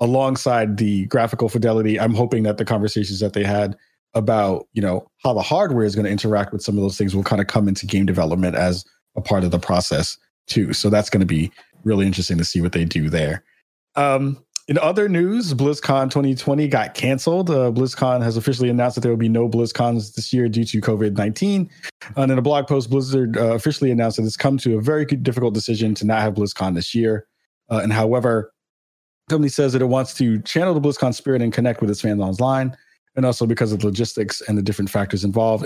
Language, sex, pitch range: English, male, 105-130 Hz